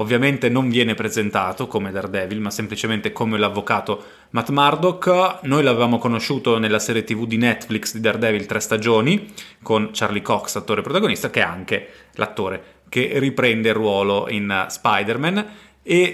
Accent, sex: native, male